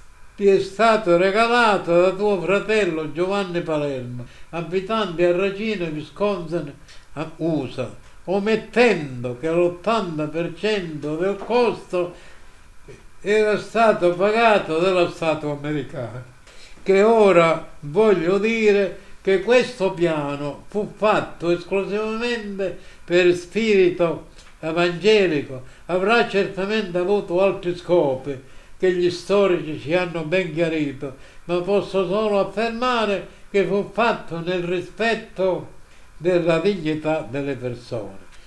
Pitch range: 160-205 Hz